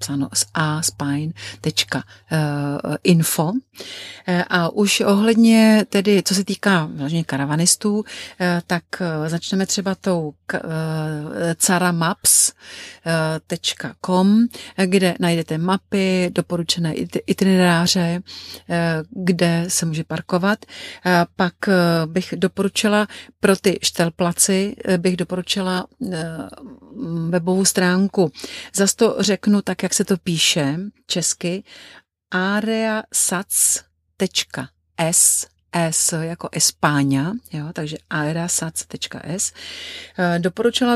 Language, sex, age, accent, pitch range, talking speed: Czech, female, 40-59, native, 165-195 Hz, 90 wpm